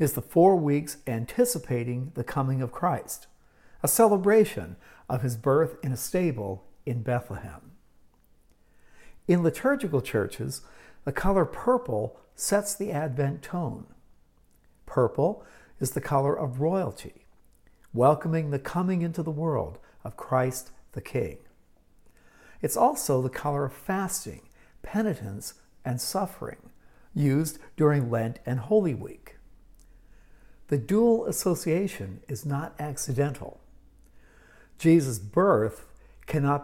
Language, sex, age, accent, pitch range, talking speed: English, male, 60-79, American, 120-165 Hz, 115 wpm